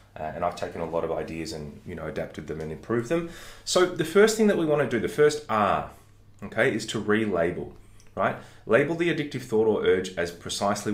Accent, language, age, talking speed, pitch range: Australian, English, 30-49, 220 wpm, 90-115 Hz